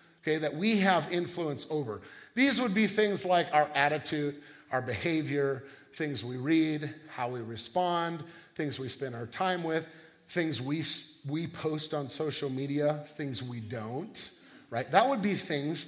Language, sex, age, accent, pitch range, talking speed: English, male, 40-59, American, 150-195 Hz, 160 wpm